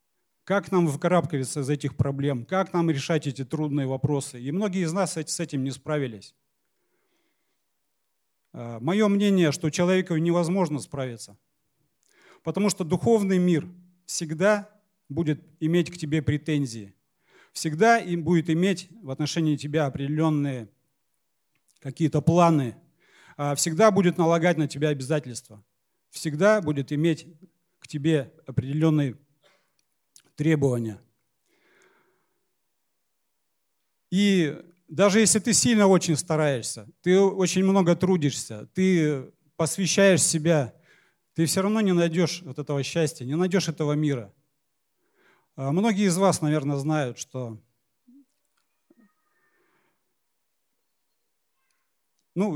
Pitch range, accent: 145-185 Hz, native